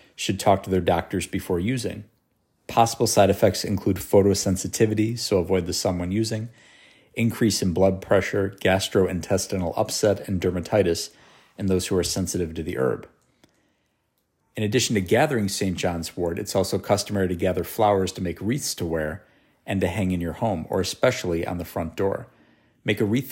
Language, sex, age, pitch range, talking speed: English, male, 50-69, 90-105 Hz, 170 wpm